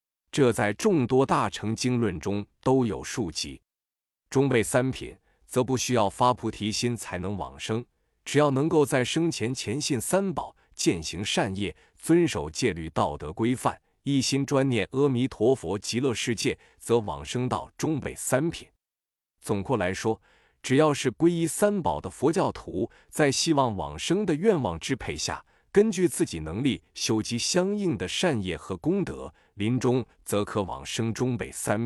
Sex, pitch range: male, 105-140 Hz